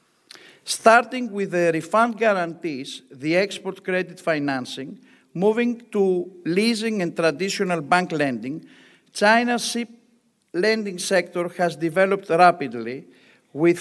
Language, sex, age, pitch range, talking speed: English, male, 60-79, 160-200 Hz, 105 wpm